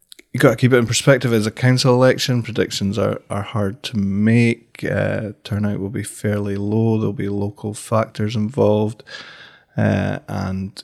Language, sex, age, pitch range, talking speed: English, male, 20-39, 105-115 Hz, 165 wpm